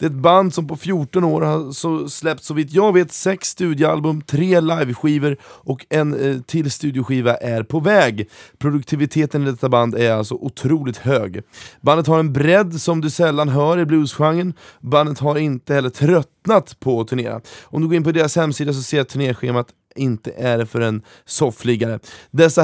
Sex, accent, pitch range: male, native, 125-160 Hz